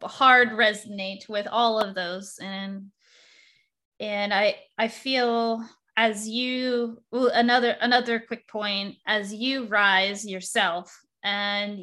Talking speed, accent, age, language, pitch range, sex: 110 wpm, American, 20-39, English, 200-235 Hz, female